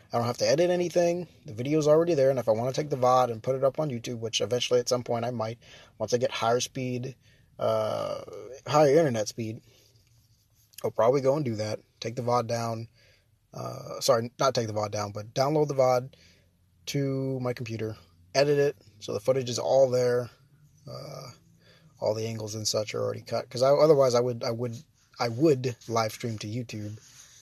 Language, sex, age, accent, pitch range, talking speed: English, male, 20-39, American, 105-130 Hz, 200 wpm